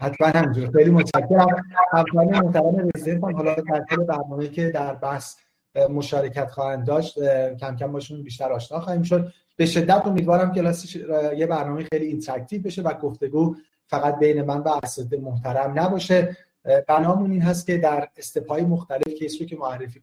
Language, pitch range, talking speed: Persian, 140-175 Hz, 155 wpm